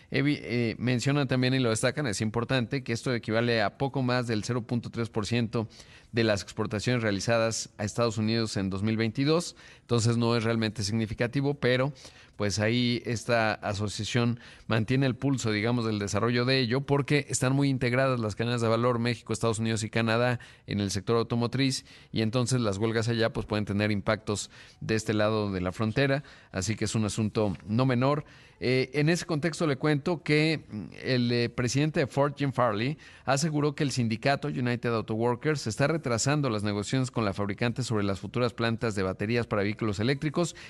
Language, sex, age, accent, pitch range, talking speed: Spanish, male, 40-59, Mexican, 110-135 Hz, 175 wpm